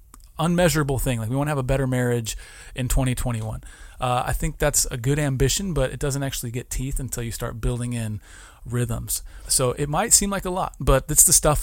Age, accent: 30-49, American